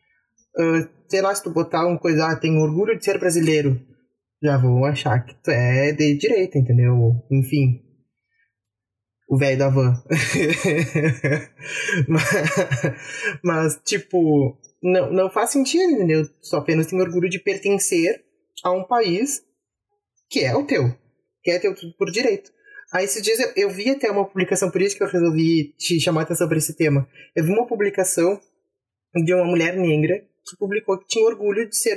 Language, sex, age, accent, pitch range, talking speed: Portuguese, male, 20-39, Brazilian, 145-215 Hz, 165 wpm